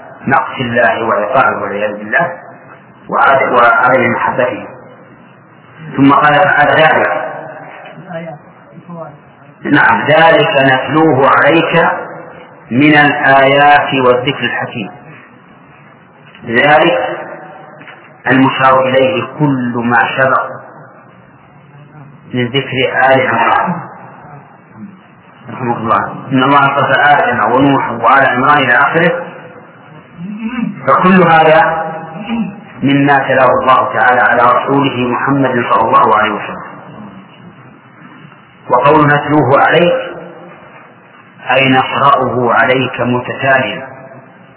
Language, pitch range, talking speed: English, 125-155 Hz, 80 wpm